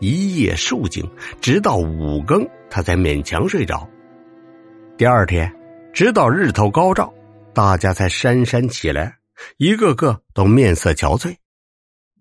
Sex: male